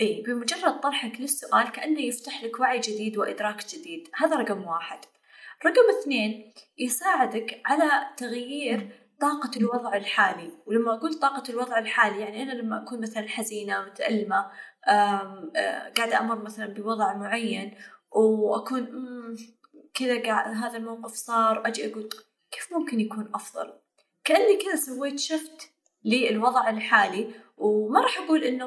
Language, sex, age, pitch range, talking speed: Arabic, female, 10-29, 215-260 Hz, 130 wpm